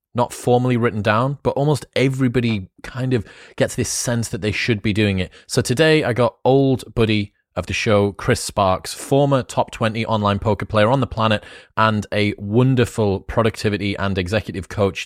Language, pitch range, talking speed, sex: English, 105-130 Hz, 180 wpm, male